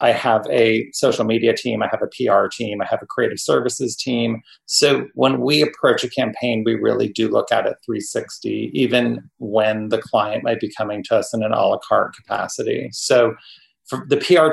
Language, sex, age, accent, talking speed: English, male, 40-59, American, 200 wpm